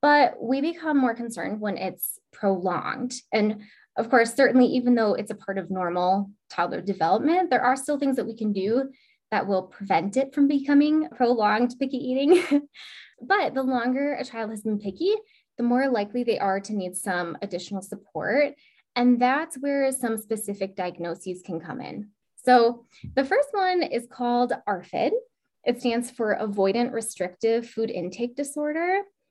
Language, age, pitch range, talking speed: English, 10-29, 200-275 Hz, 165 wpm